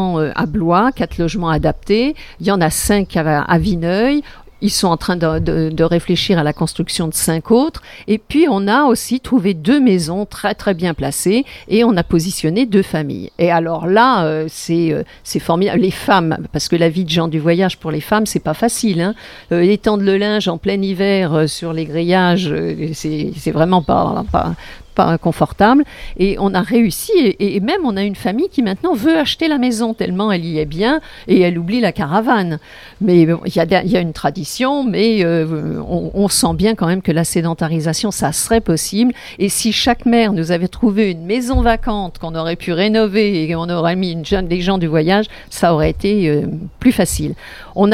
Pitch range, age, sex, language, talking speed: 165-215 Hz, 50-69, female, French, 200 wpm